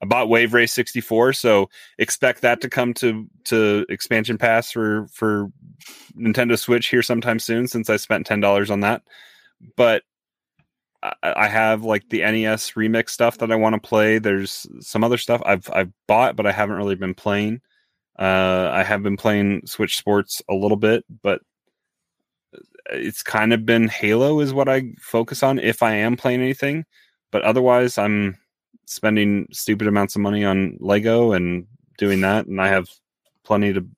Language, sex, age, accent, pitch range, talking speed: English, male, 30-49, American, 100-120 Hz, 175 wpm